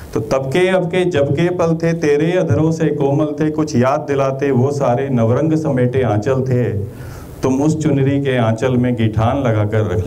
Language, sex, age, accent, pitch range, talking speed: Hindi, male, 40-59, native, 105-145 Hz, 175 wpm